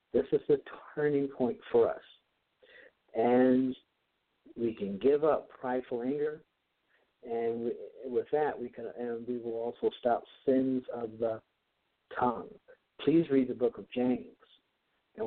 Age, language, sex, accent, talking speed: 60-79, English, male, American, 140 wpm